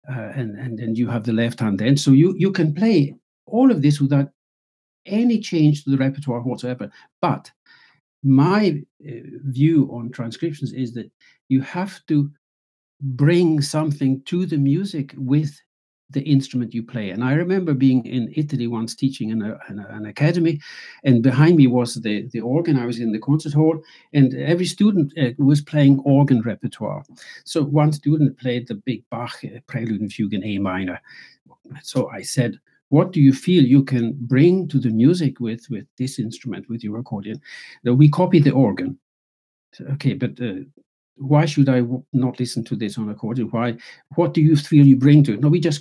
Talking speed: 195 wpm